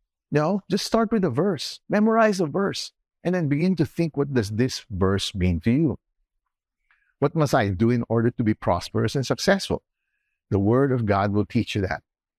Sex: male